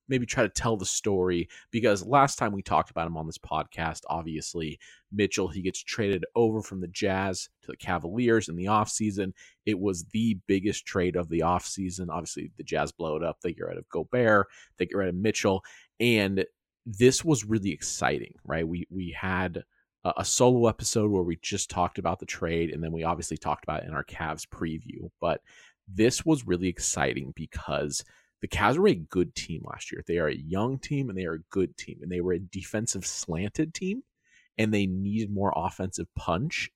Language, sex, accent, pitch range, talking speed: English, male, American, 90-110 Hz, 205 wpm